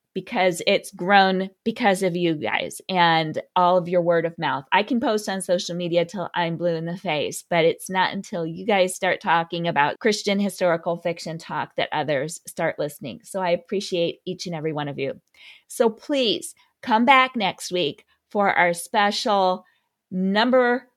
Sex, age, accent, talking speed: female, 30-49, American, 175 wpm